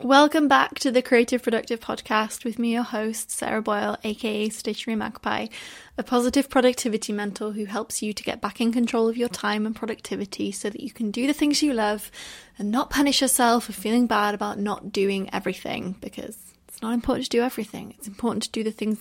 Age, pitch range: 20-39, 200-240 Hz